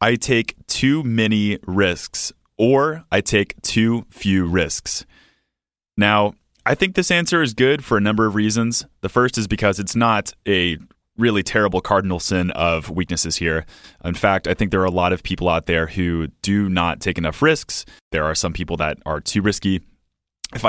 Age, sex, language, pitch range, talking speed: 20-39, male, English, 85-110 Hz, 185 wpm